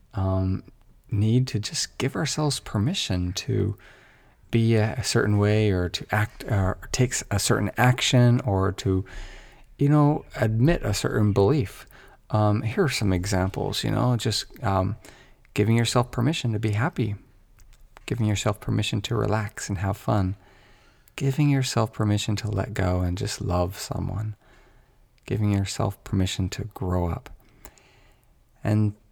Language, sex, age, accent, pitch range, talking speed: English, male, 40-59, American, 95-120 Hz, 140 wpm